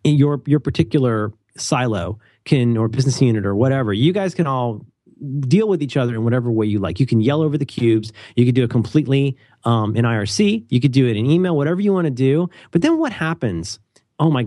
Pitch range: 110-150 Hz